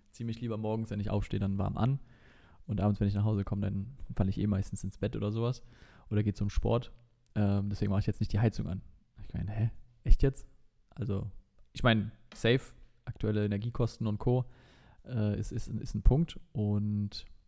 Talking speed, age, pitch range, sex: 200 wpm, 20-39, 100-115 Hz, male